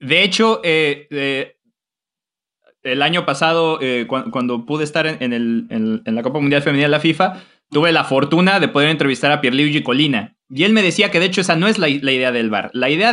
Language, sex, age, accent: Spanish, male, 30-49, Mexican